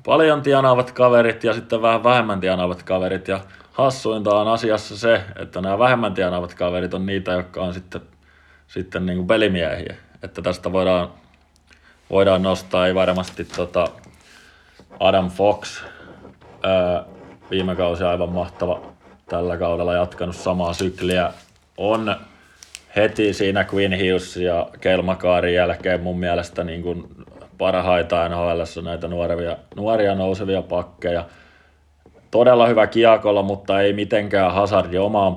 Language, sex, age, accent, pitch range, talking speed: Finnish, male, 20-39, native, 90-105 Hz, 125 wpm